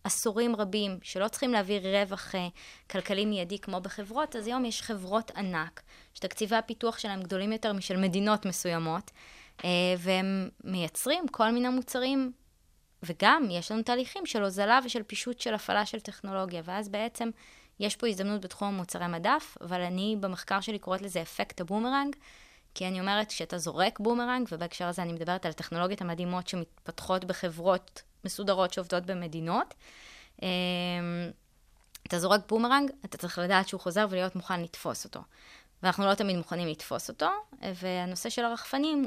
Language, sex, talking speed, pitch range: Hebrew, female, 145 wpm, 180-225 Hz